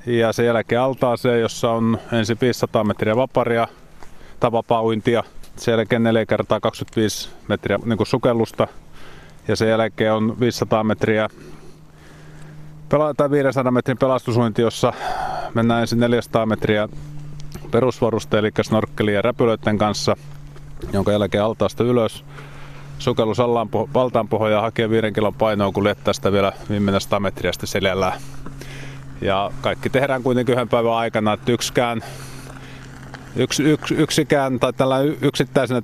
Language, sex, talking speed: Finnish, male, 120 wpm